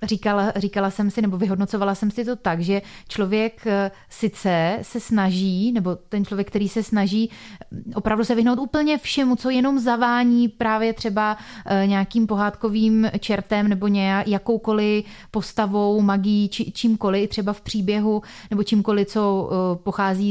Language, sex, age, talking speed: Czech, female, 30-49, 140 wpm